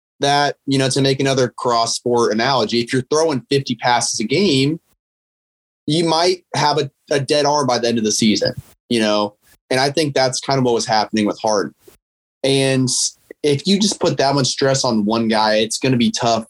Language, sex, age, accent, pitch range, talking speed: English, male, 20-39, American, 115-145 Hz, 210 wpm